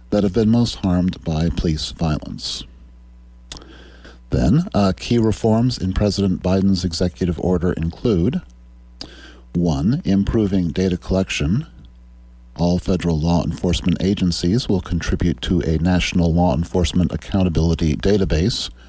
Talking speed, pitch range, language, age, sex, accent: 115 wpm, 65-95 Hz, English, 40-59, male, American